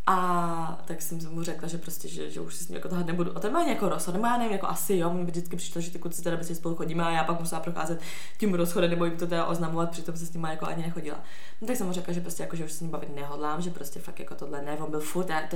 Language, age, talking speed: Czech, 20-39, 295 wpm